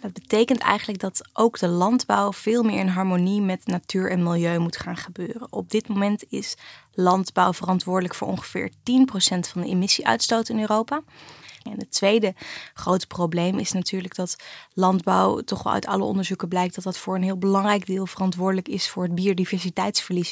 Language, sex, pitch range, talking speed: Dutch, female, 185-225 Hz, 175 wpm